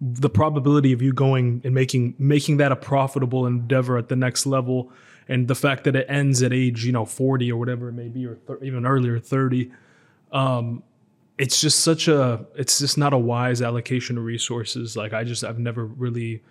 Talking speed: 200 wpm